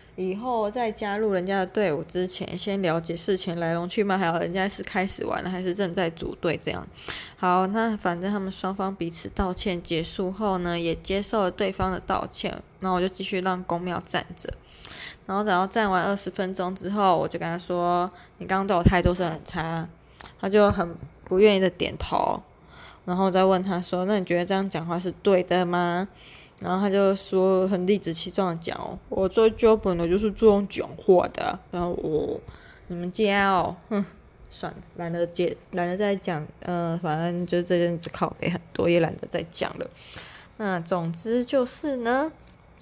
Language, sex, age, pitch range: Chinese, female, 10-29, 175-200 Hz